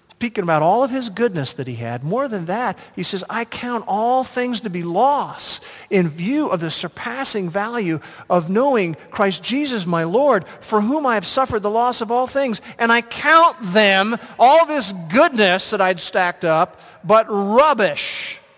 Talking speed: 180 wpm